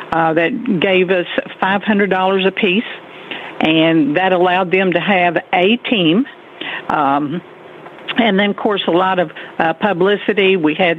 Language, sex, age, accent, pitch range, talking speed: English, female, 60-79, American, 165-190 Hz, 150 wpm